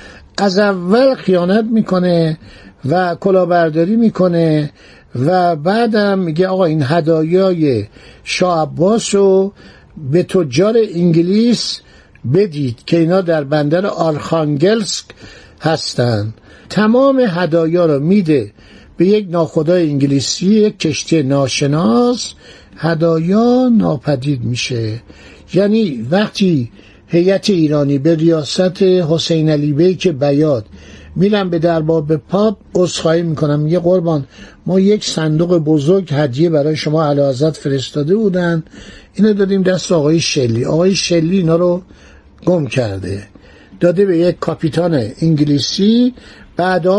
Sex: male